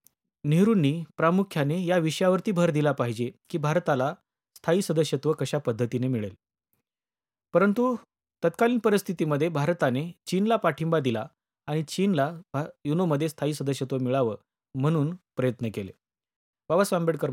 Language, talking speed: Marathi, 110 wpm